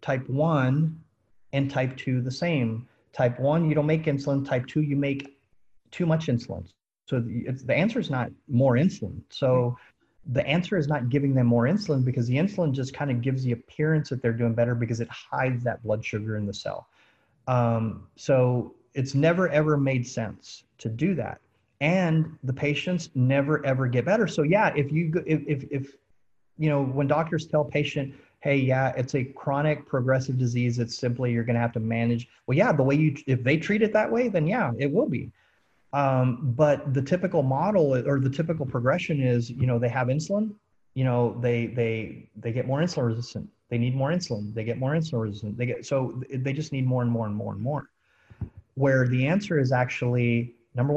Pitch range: 120-145 Hz